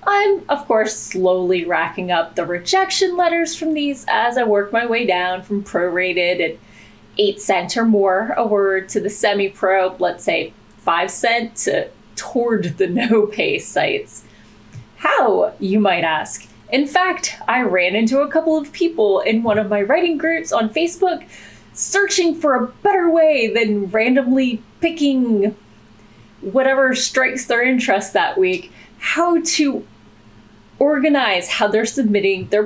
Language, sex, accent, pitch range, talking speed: English, female, American, 195-310 Hz, 145 wpm